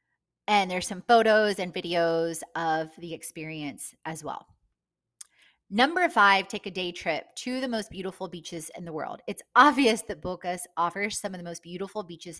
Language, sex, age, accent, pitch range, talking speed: English, female, 20-39, American, 170-220 Hz, 175 wpm